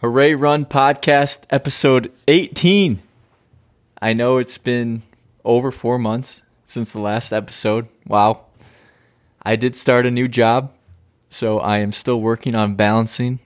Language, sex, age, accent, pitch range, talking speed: English, male, 20-39, American, 105-125 Hz, 135 wpm